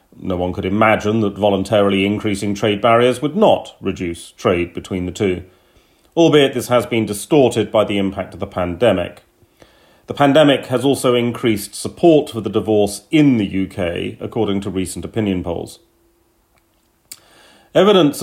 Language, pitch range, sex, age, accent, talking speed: English, 95-130 Hz, male, 40-59, British, 150 wpm